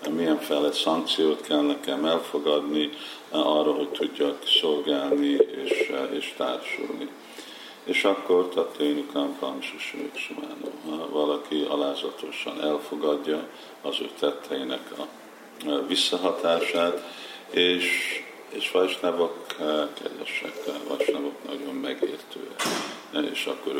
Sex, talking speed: male, 90 wpm